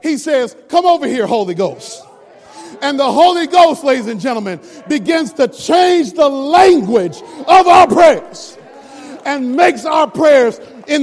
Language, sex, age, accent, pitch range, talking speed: English, male, 50-69, American, 250-315 Hz, 145 wpm